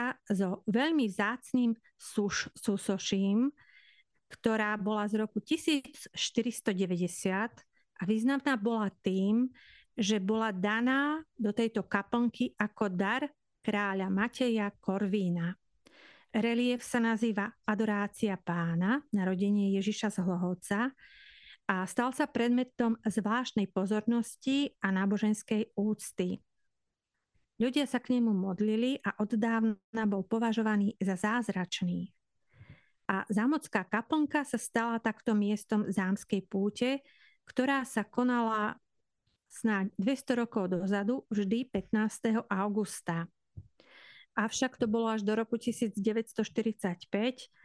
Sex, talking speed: female, 100 wpm